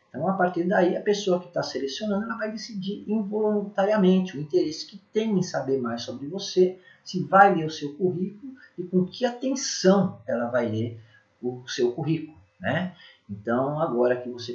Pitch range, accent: 120-185 Hz, Brazilian